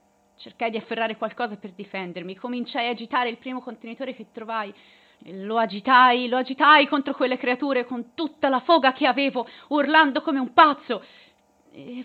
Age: 30-49